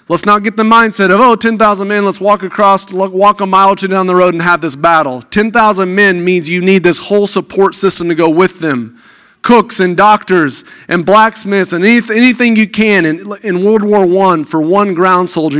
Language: English